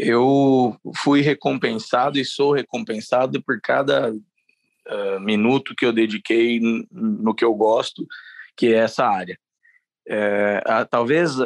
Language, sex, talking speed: Portuguese, male, 135 wpm